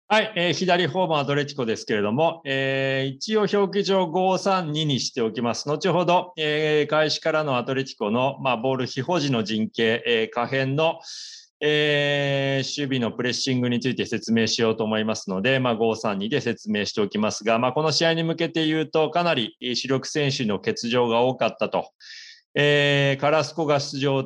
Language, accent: Japanese, native